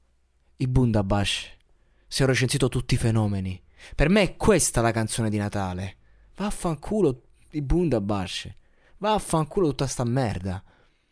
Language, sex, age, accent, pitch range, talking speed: Italian, male, 20-39, native, 110-175 Hz, 125 wpm